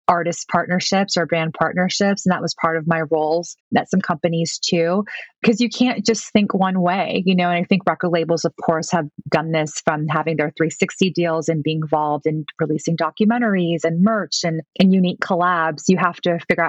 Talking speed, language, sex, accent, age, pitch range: 200 wpm, English, female, American, 20-39, 160-180 Hz